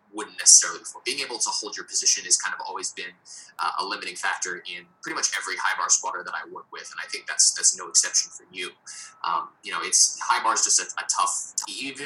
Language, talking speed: English, 250 wpm